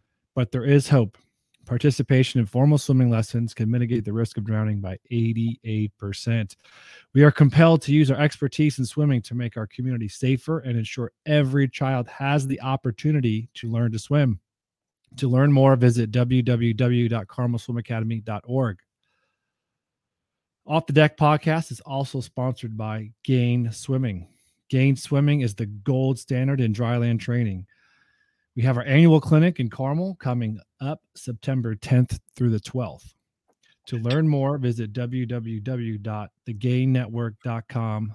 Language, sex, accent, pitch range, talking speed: English, male, American, 115-140 Hz, 135 wpm